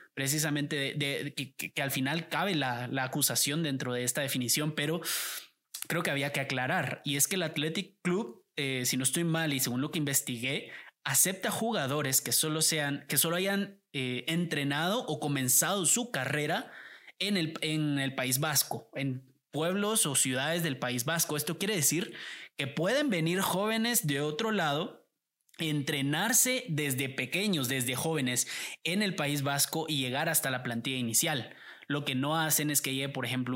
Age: 20-39